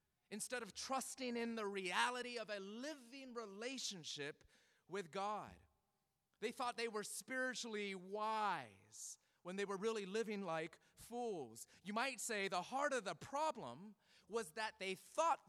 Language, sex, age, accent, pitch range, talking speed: English, male, 30-49, American, 180-225 Hz, 145 wpm